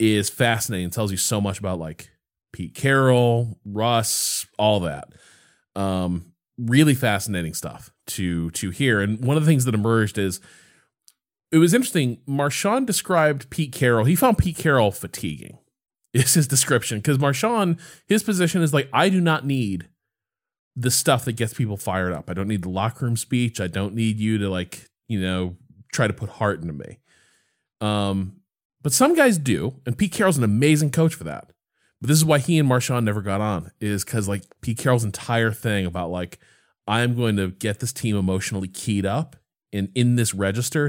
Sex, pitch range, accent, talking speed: male, 105-155 Hz, American, 185 wpm